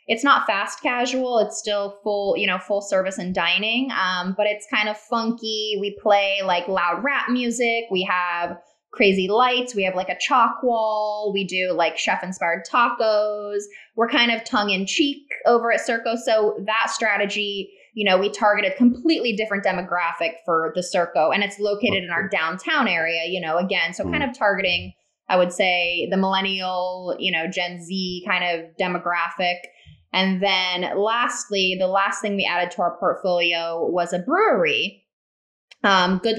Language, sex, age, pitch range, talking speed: English, female, 20-39, 180-215 Hz, 175 wpm